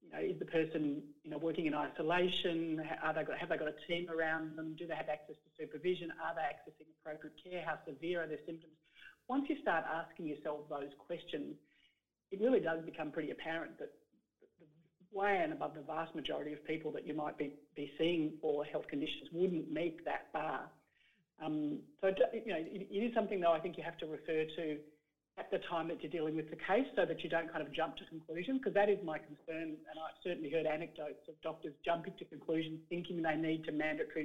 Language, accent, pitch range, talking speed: English, Australian, 155-175 Hz, 215 wpm